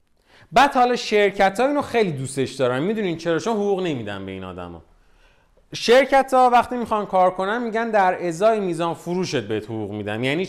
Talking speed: 175 wpm